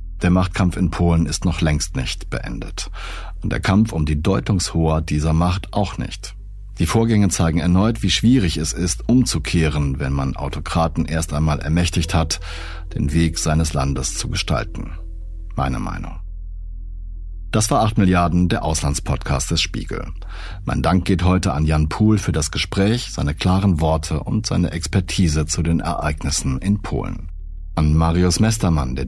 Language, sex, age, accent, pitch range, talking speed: German, male, 60-79, German, 80-100 Hz, 155 wpm